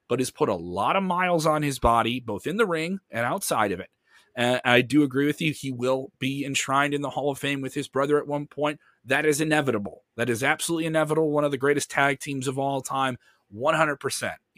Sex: male